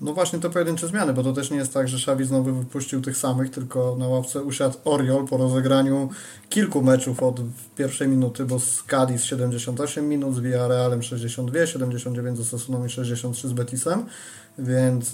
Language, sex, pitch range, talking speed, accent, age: Polish, male, 125-135 Hz, 175 wpm, native, 20-39